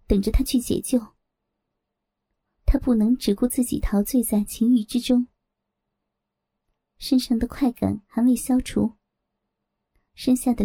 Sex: male